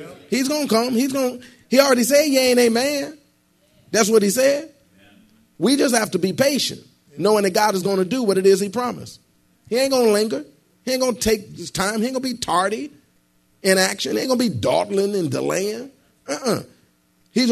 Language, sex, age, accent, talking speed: English, male, 40-59, American, 200 wpm